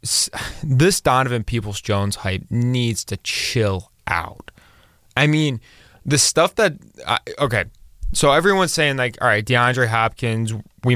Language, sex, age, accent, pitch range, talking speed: English, male, 20-39, American, 110-145 Hz, 135 wpm